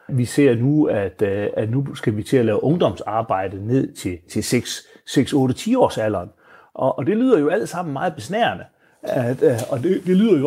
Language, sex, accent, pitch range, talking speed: Danish, male, native, 120-165 Hz, 205 wpm